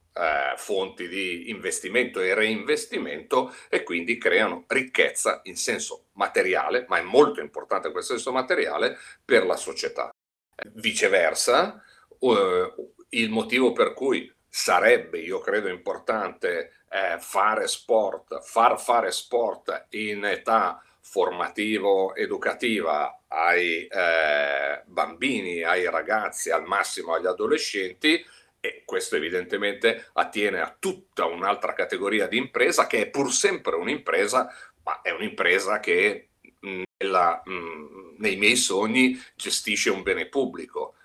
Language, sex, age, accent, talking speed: Italian, male, 50-69, native, 110 wpm